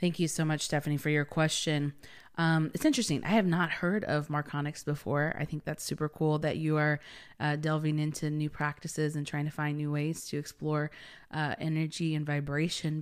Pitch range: 150-165 Hz